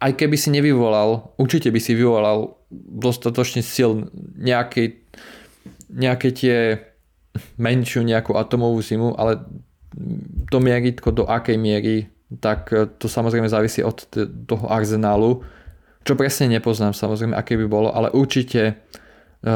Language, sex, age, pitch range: Slovak, male, 20-39, 105-125 Hz